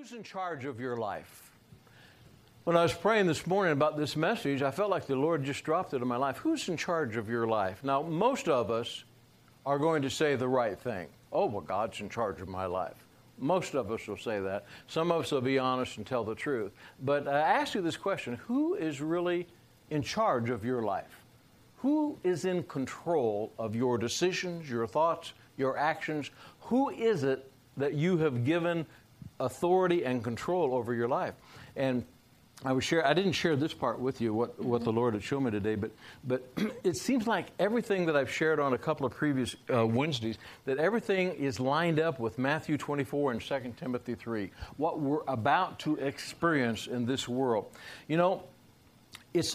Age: 60-79